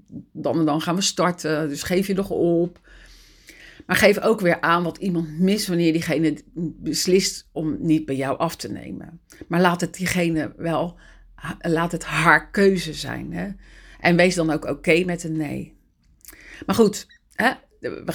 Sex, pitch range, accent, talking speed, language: female, 160-195 Hz, Dutch, 175 wpm, Dutch